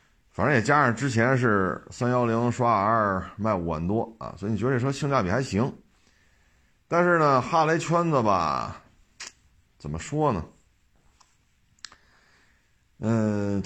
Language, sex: Chinese, male